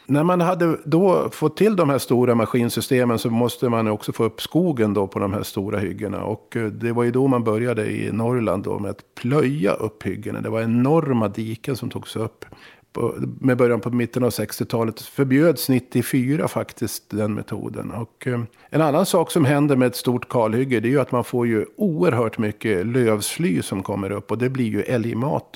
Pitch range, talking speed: 110-140 Hz, 200 wpm